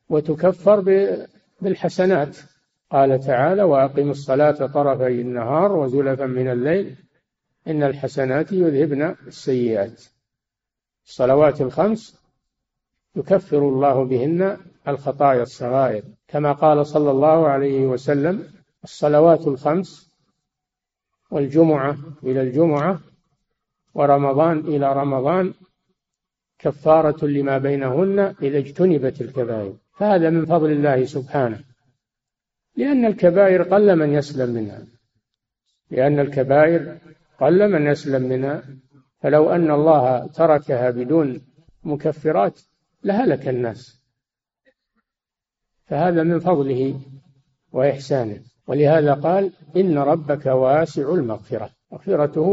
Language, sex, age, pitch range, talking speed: Arabic, male, 50-69, 135-170 Hz, 90 wpm